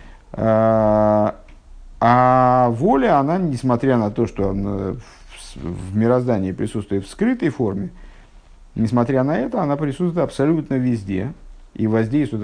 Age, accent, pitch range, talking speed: 50-69, native, 100-140 Hz, 115 wpm